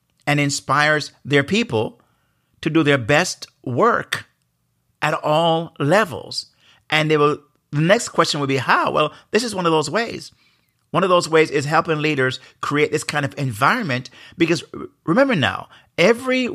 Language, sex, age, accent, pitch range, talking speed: English, male, 50-69, American, 120-155 Hz, 160 wpm